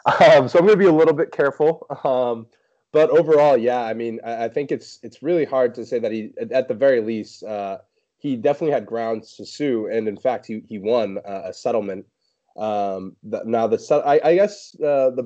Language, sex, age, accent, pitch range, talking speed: English, male, 20-39, American, 105-130 Hz, 225 wpm